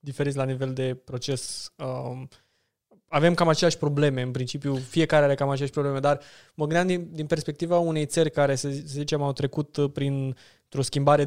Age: 20-39